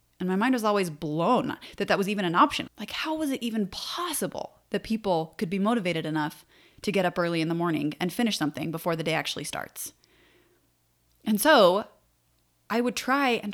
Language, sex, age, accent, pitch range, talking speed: English, female, 20-39, American, 170-225 Hz, 200 wpm